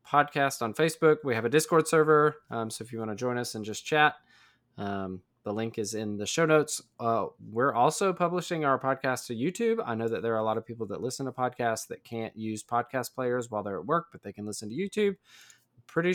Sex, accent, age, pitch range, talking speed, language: male, American, 20-39, 110-130 Hz, 240 wpm, English